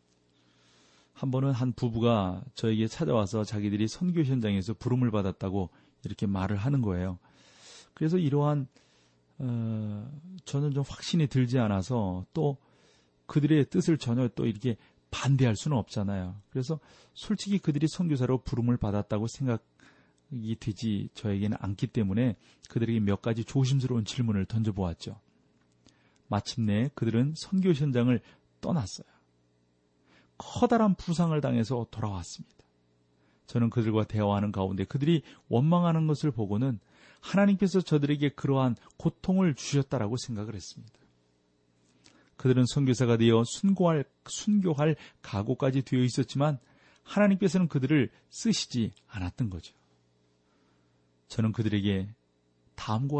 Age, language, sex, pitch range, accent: 40-59, Korean, male, 100-145 Hz, native